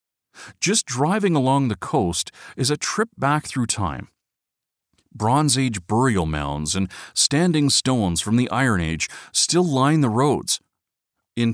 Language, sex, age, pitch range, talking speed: English, male, 40-59, 100-150 Hz, 140 wpm